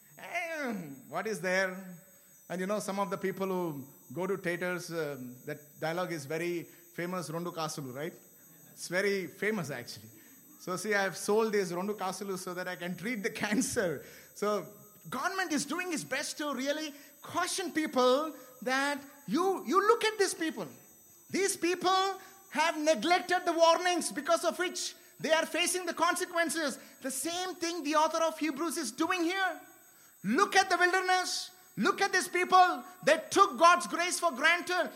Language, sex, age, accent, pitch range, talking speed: English, male, 30-49, Indian, 205-335 Hz, 165 wpm